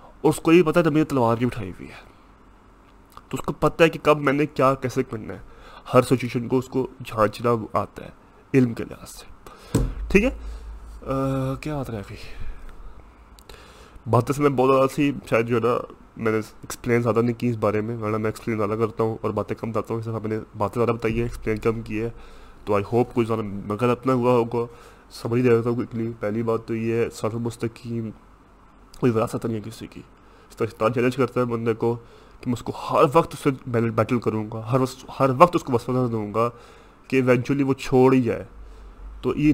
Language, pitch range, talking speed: Urdu, 110-130 Hz, 205 wpm